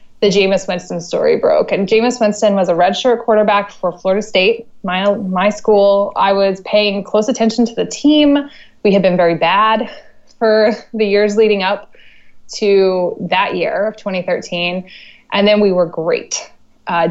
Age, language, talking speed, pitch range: 20-39, English, 165 wpm, 185-220 Hz